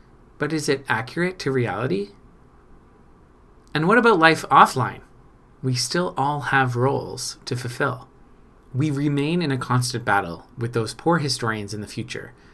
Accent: American